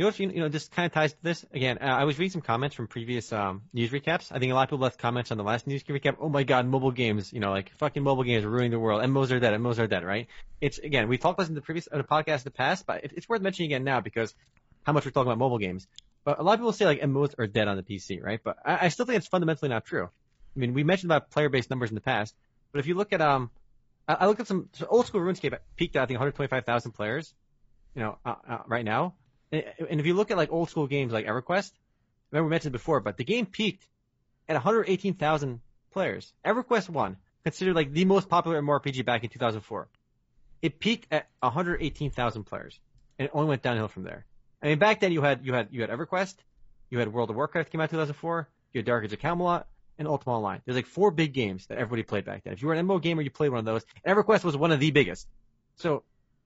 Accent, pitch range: American, 120-165 Hz